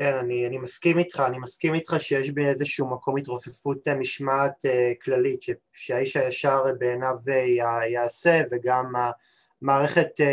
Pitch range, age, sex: 130-160 Hz, 20-39, male